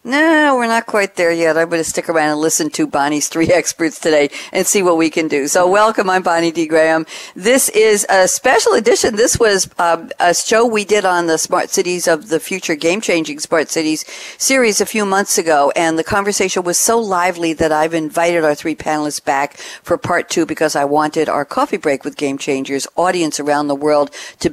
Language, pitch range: English, 155-190 Hz